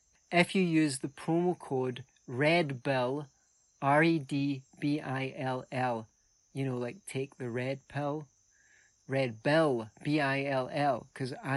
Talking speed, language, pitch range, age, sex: 95 wpm, English, 120-140 Hz, 30-49, male